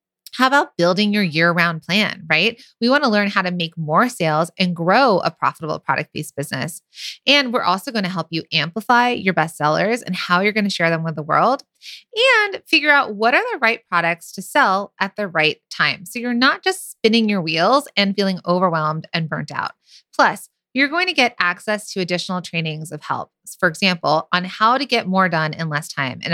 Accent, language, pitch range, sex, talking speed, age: American, English, 165-225 Hz, female, 215 wpm, 30-49